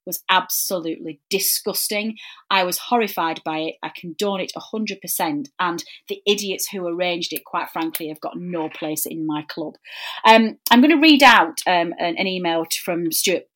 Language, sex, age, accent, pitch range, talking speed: English, female, 30-49, British, 165-245 Hz, 180 wpm